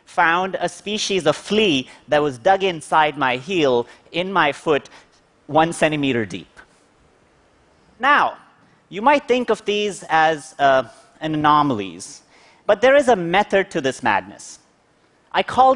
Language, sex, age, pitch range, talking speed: English, male, 30-49, 145-210 Hz, 135 wpm